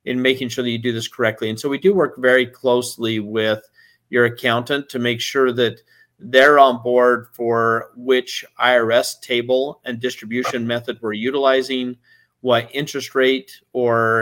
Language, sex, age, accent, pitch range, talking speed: English, male, 40-59, American, 110-125 Hz, 160 wpm